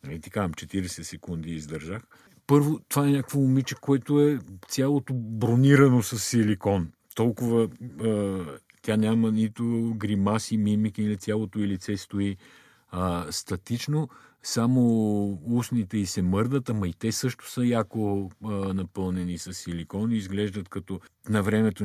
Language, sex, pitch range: Bulgarian, male, 100-120 Hz